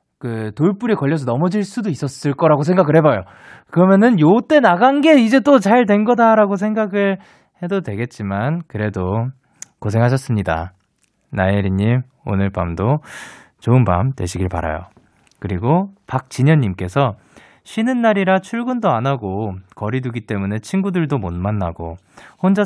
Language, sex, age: Korean, male, 20-39